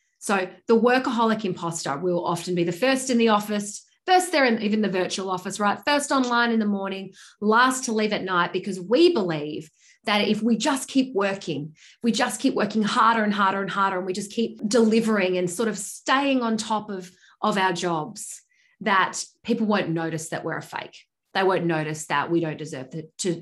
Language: English